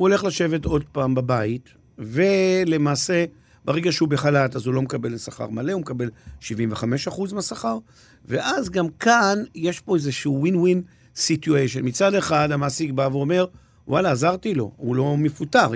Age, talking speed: 50-69, 150 wpm